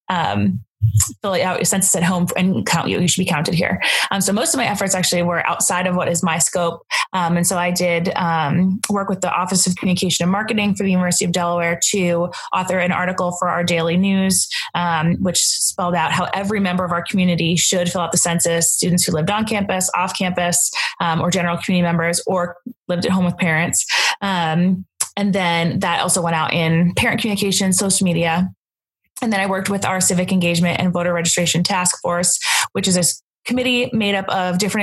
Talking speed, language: 210 wpm, English